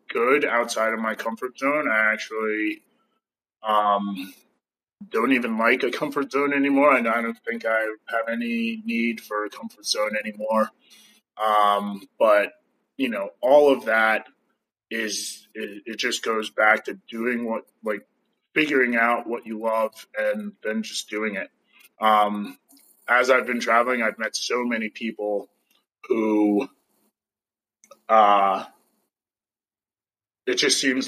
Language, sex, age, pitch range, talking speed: English, male, 20-39, 110-140 Hz, 140 wpm